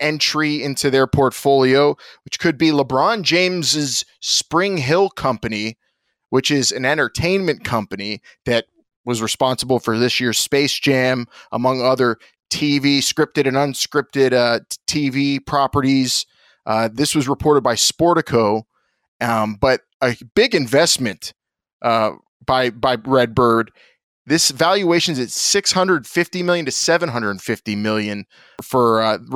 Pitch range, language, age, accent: 120-145 Hz, English, 20-39, American